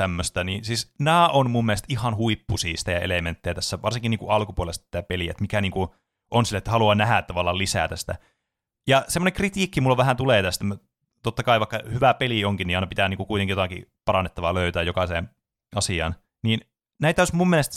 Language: Finnish